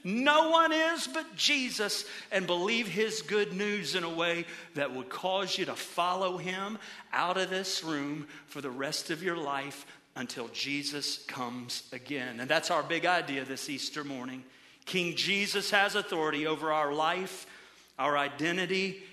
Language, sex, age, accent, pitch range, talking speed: English, male, 50-69, American, 135-175 Hz, 160 wpm